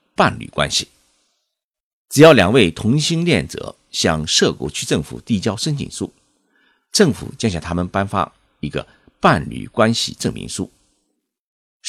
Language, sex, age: Chinese, male, 50-69